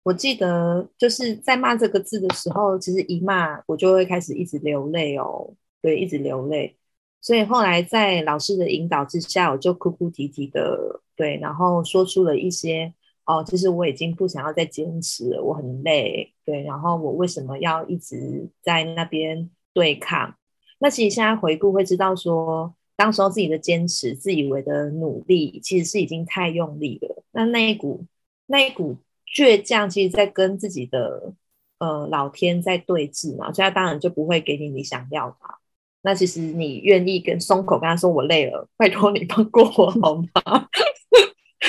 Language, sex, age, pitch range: Chinese, female, 20-39, 160-205 Hz